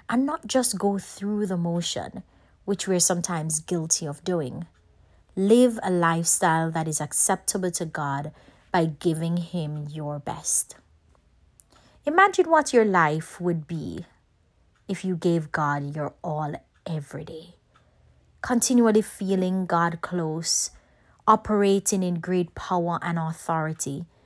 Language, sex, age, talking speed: English, female, 30-49, 125 wpm